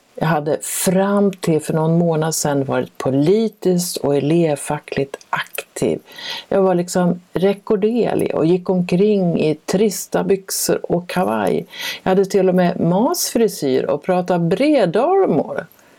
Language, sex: Swedish, female